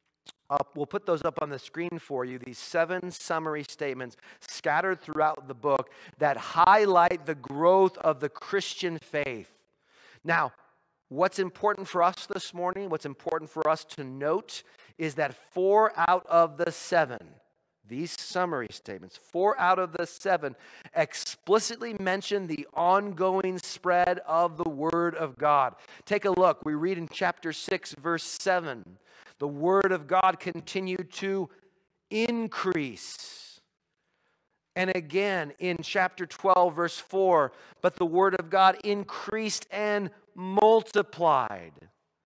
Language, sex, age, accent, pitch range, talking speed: English, male, 40-59, American, 155-190 Hz, 135 wpm